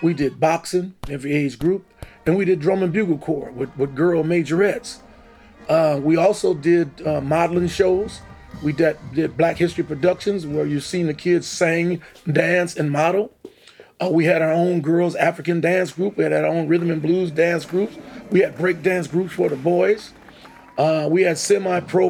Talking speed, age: 185 wpm, 40-59